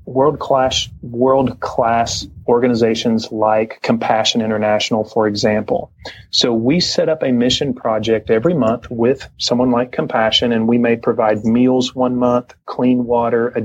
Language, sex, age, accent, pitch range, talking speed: English, male, 30-49, American, 115-135 Hz, 145 wpm